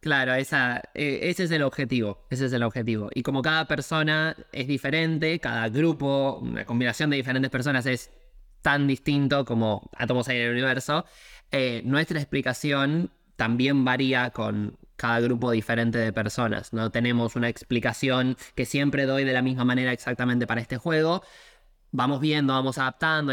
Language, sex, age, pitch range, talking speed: Spanish, male, 20-39, 120-140 Hz, 155 wpm